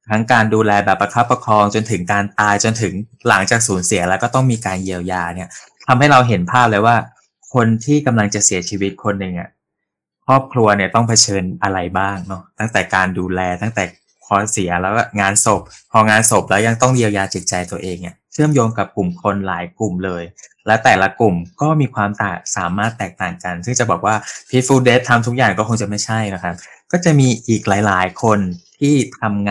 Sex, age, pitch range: male, 20-39, 95-115 Hz